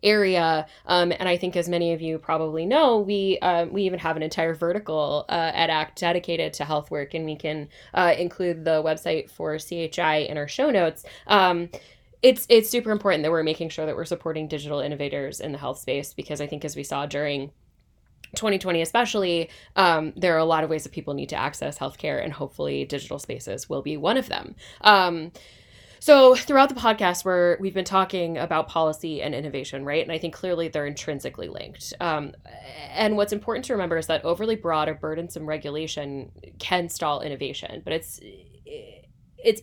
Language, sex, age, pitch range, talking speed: English, female, 10-29, 155-190 Hz, 195 wpm